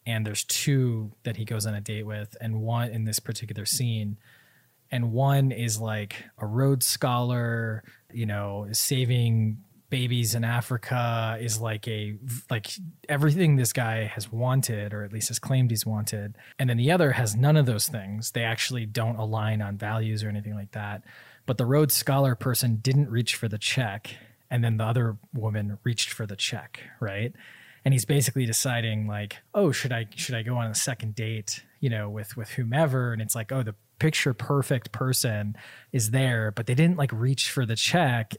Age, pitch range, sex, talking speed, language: 20-39, 110-135 Hz, male, 190 wpm, English